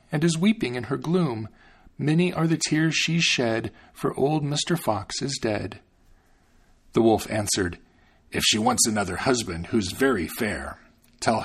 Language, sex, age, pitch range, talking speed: English, male, 40-59, 95-160 Hz, 155 wpm